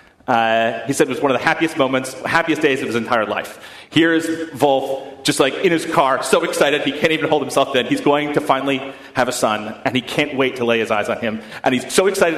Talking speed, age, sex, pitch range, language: 255 wpm, 30-49, male, 130-160 Hz, English